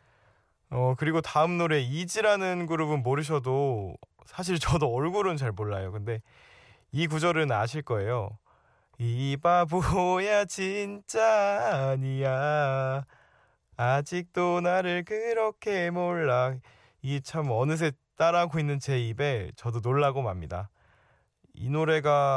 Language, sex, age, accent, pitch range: Korean, male, 20-39, native, 110-155 Hz